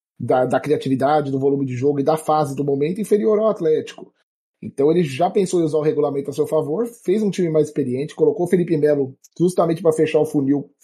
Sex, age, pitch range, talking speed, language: male, 20-39, 135-175 Hz, 220 wpm, Portuguese